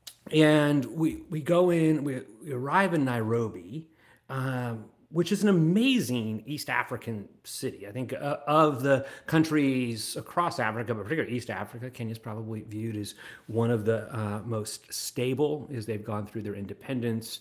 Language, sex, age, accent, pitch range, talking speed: English, male, 30-49, American, 110-140 Hz, 160 wpm